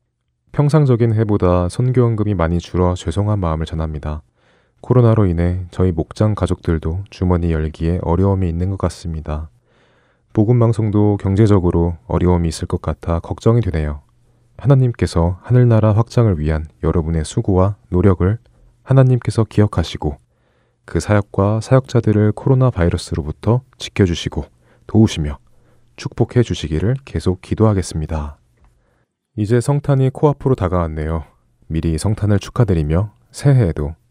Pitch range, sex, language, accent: 85-115 Hz, male, Korean, native